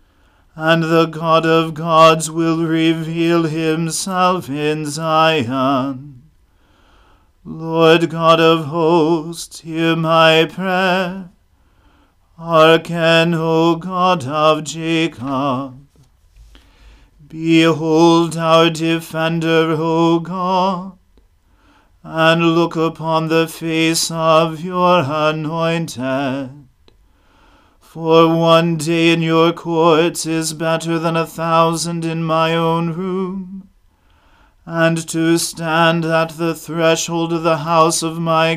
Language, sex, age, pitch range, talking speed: English, male, 40-59, 155-165 Hz, 95 wpm